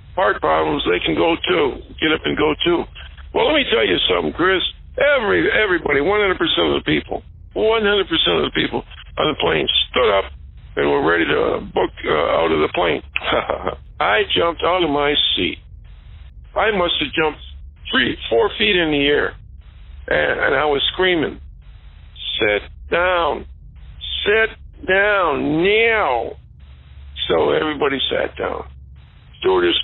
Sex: male